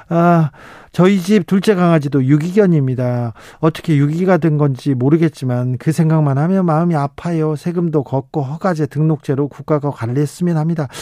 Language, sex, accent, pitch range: Korean, male, native, 135-165 Hz